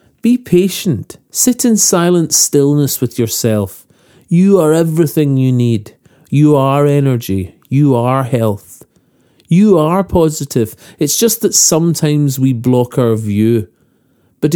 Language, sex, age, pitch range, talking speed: English, male, 40-59, 120-170 Hz, 130 wpm